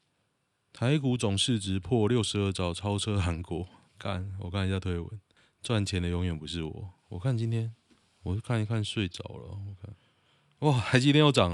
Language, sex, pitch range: Chinese, male, 90-110 Hz